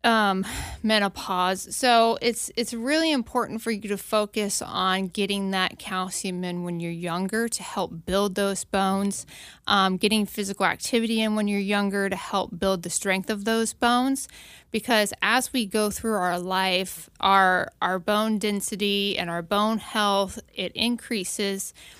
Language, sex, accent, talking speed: English, female, American, 155 wpm